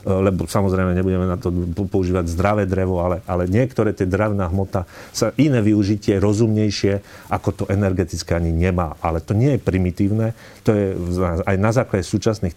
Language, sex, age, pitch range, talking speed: Slovak, male, 40-59, 85-105 Hz, 160 wpm